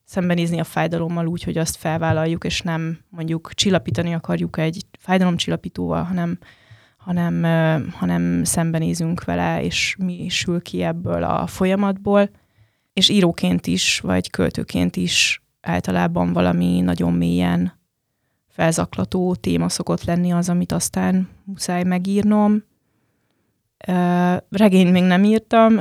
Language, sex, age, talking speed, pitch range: Hungarian, female, 20-39, 120 wpm, 110-180 Hz